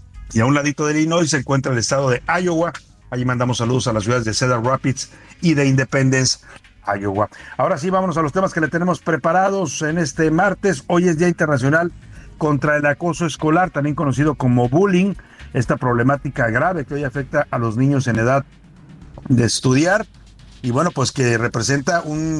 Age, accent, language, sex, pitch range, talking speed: 60-79, Mexican, Spanish, male, 120-145 Hz, 185 wpm